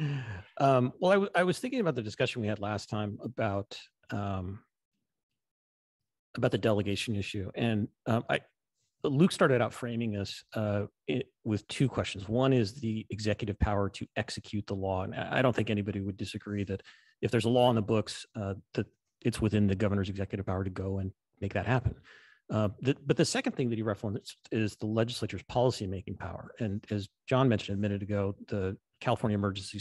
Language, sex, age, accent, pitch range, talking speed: English, male, 40-59, American, 100-120 Hz, 195 wpm